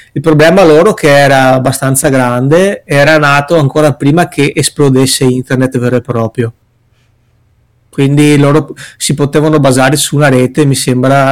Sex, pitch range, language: male, 125-155 Hz, Italian